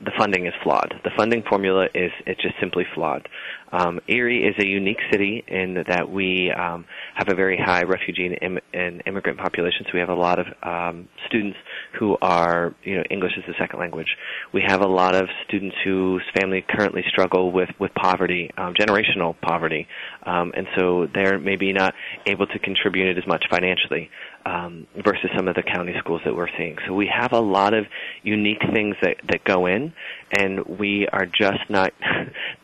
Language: English